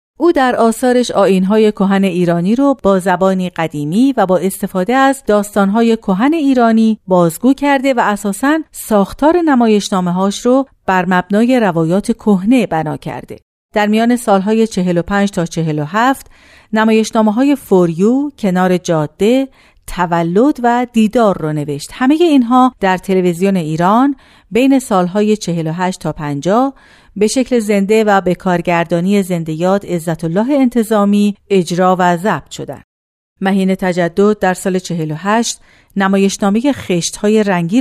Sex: female